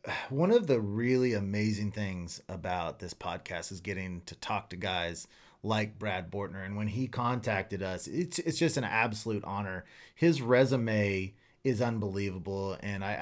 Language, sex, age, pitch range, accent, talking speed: English, male, 30-49, 105-130 Hz, American, 160 wpm